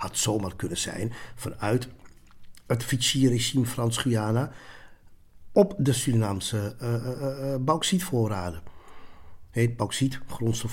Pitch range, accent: 100-140 Hz, Dutch